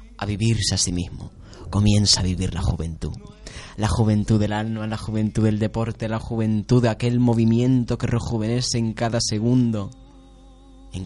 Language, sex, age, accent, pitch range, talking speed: Spanish, male, 20-39, Spanish, 100-120 Hz, 155 wpm